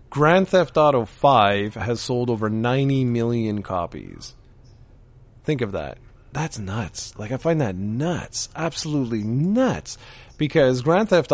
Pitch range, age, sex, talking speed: 110-150 Hz, 30-49, male, 130 wpm